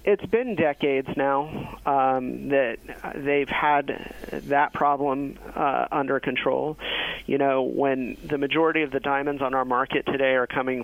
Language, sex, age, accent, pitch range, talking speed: English, male, 40-59, American, 125-145 Hz, 150 wpm